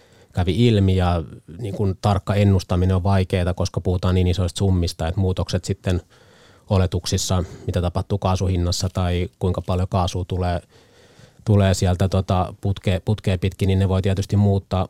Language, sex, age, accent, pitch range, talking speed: Finnish, male, 30-49, native, 90-100 Hz, 145 wpm